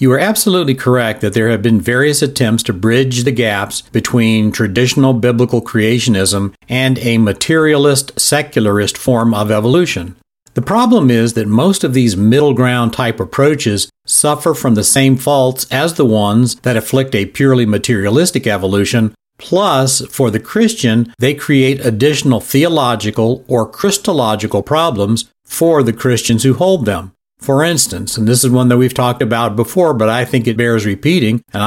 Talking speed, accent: 160 wpm, American